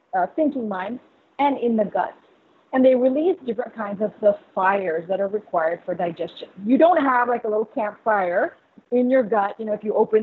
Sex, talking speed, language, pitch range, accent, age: female, 205 wpm, English, 200-245 Hz, American, 40-59